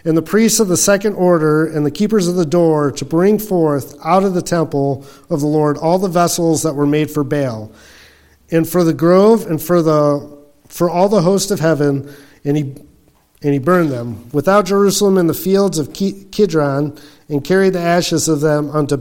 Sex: male